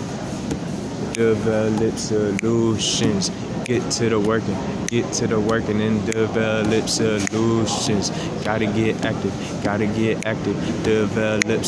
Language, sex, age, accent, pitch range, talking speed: English, male, 20-39, American, 110-115 Hz, 105 wpm